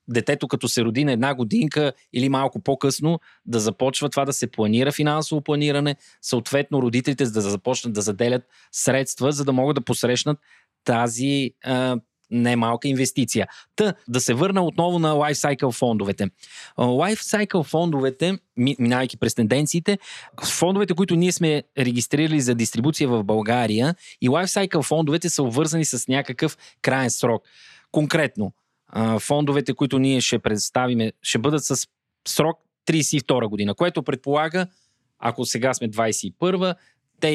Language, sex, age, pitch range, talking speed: Bulgarian, male, 20-39, 120-155 Hz, 135 wpm